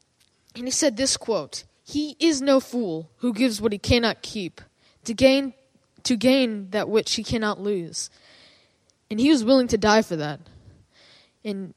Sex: female